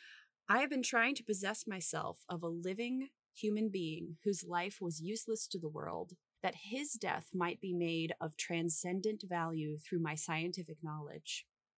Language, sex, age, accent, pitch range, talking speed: English, female, 20-39, American, 165-215 Hz, 165 wpm